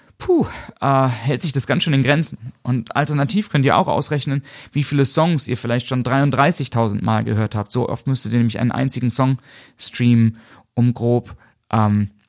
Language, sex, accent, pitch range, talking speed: German, male, German, 115-135 Hz, 180 wpm